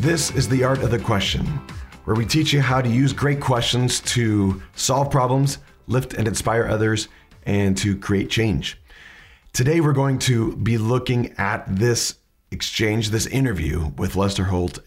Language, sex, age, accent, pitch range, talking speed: English, male, 40-59, American, 85-125 Hz, 165 wpm